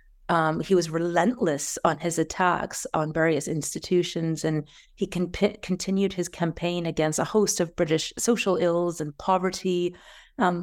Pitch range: 160-190 Hz